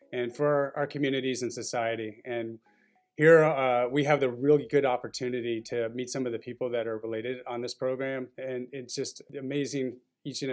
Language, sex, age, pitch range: English, male, 30-49, 115-130 Hz